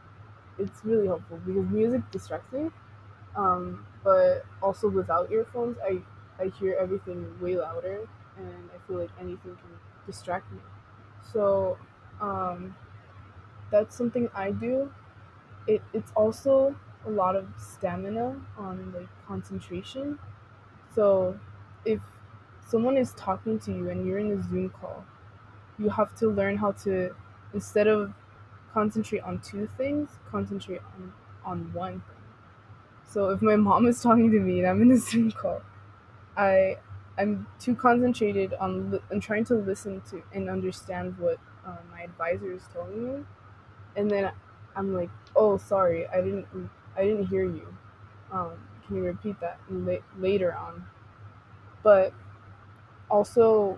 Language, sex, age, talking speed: English, female, 20-39, 145 wpm